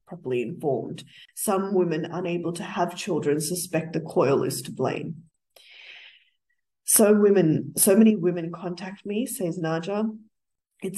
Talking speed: 130 wpm